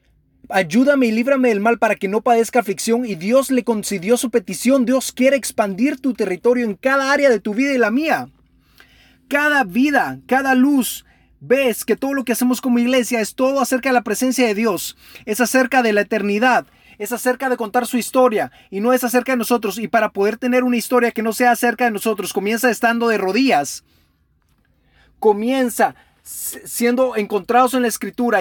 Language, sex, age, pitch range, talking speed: English, male, 30-49, 210-255 Hz, 190 wpm